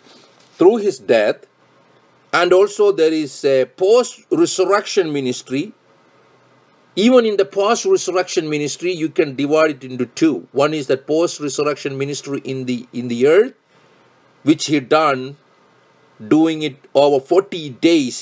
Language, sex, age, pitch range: English, male, 50-69, 140-235 Hz